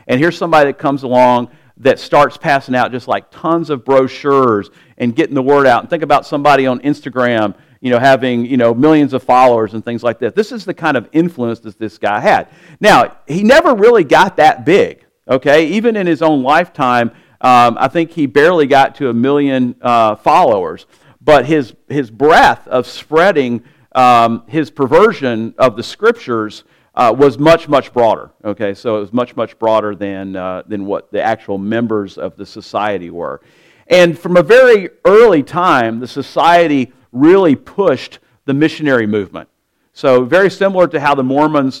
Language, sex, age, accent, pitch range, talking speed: English, male, 50-69, American, 120-155 Hz, 180 wpm